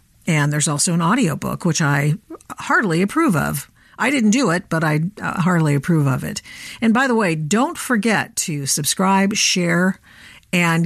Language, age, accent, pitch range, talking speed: English, 50-69, American, 155-215 Hz, 165 wpm